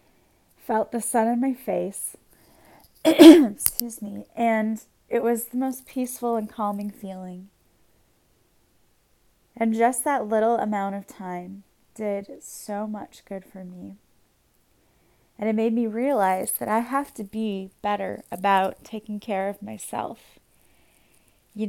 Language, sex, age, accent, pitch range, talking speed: English, female, 20-39, American, 200-235 Hz, 130 wpm